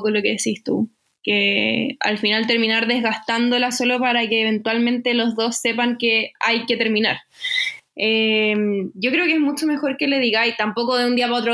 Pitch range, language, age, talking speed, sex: 220-270 Hz, Spanish, 10-29, 190 wpm, female